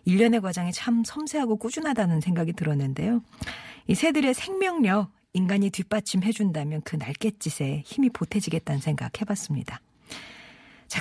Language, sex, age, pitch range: Korean, female, 40-59, 160-240 Hz